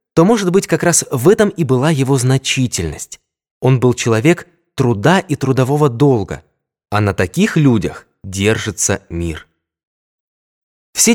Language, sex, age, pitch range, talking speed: Russian, male, 20-39, 110-165 Hz, 135 wpm